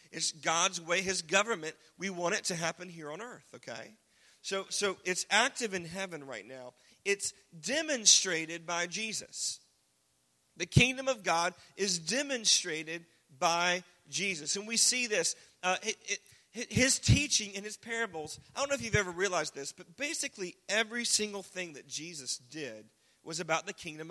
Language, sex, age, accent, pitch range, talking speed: English, male, 40-59, American, 160-210 Hz, 160 wpm